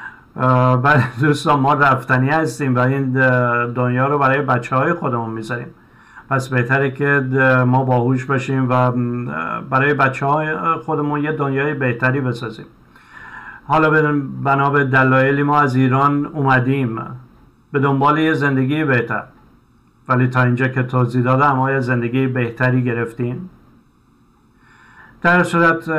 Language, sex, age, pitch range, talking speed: Persian, male, 50-69, 125-150 Hz, 120 wpm